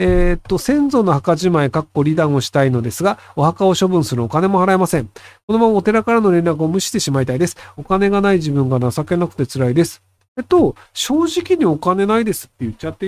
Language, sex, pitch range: Japanese, male, 130-205 Hz